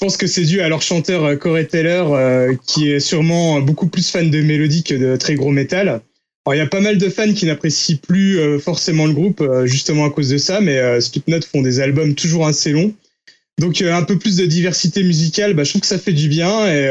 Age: 20-39